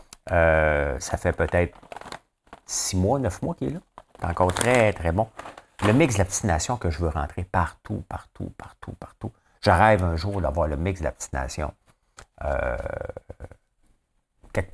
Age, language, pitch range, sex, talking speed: 50-69, French, 85-110 Hz, male, 170 wpm